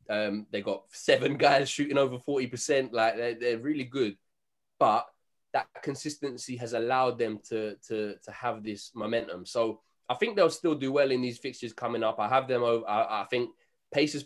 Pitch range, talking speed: 110-130 Hz, 190 wpm